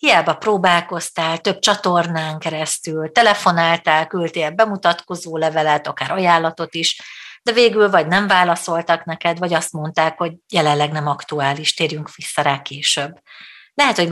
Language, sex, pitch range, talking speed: Hungarian, female, 165-190 Hz, 130 wpm